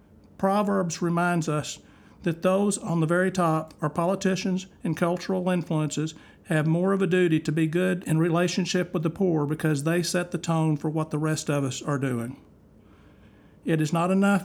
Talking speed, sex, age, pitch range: 185 wpm, male, 50-69, 160-185 Hz